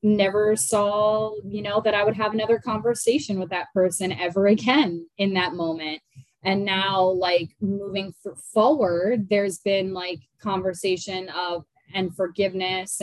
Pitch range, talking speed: 165-200 Hz, 140 wpm